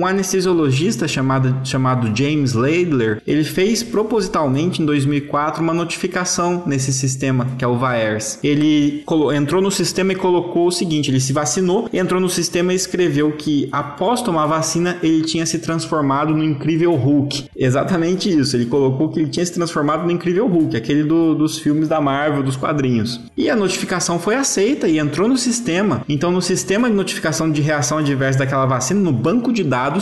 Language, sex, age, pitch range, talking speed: Portuguese, male, 20-39, 135-175 Hz, 180 wpm